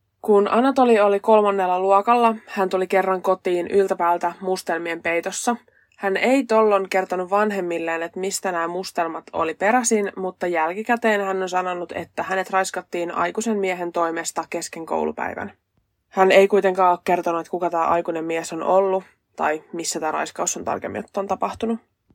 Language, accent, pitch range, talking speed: Finnish, native, 170-200 Hz, 150 wpm